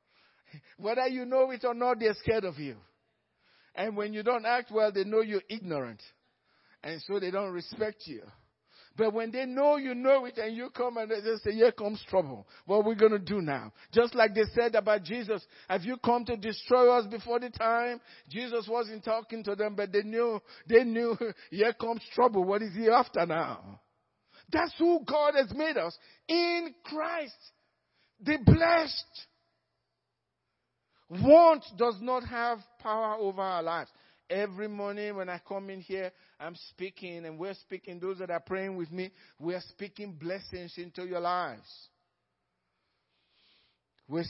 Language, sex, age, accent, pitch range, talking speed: English, male, 50-69, Nigerian, 185-240 Hz, 170 wpm